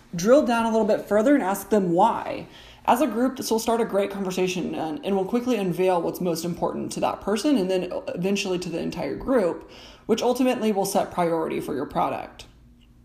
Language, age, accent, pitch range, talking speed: English, 20-39, American, 175-220 Hz, 205 wpm